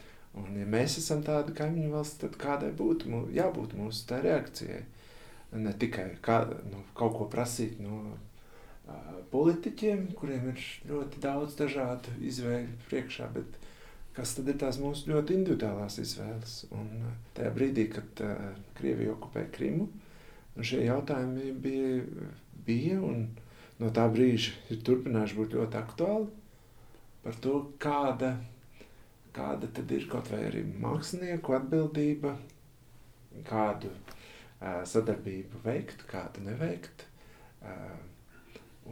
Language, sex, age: English, male, 50-69